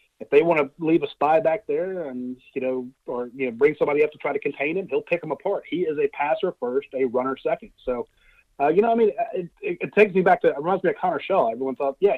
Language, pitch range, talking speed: English, 130-205 Hz, 285 wpm